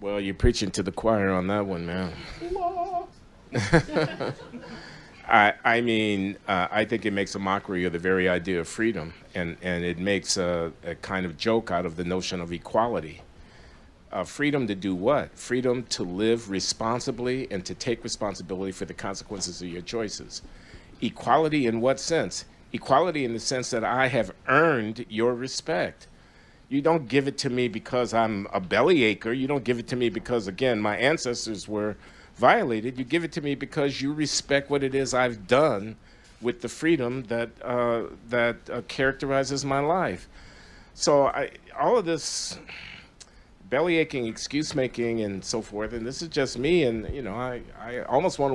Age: 50-69